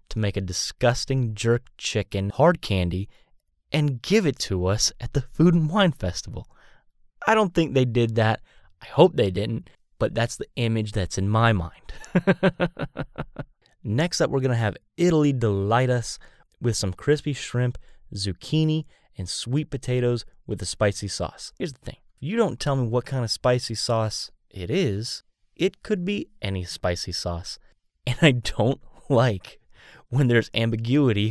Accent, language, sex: American, English, male